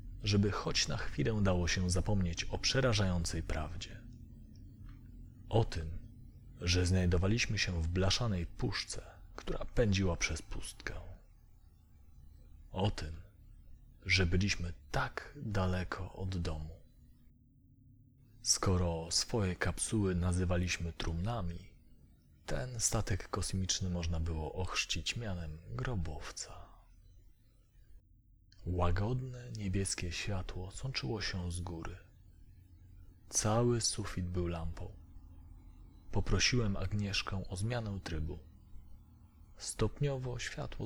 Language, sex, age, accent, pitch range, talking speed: Polish, male, 30-49, native, 85-110 Hz, 90 wpm